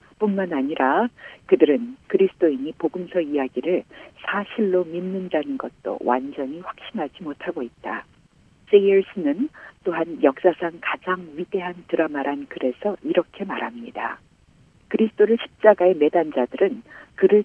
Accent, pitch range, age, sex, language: native, 145-200 Hz, 50-69, female, Korean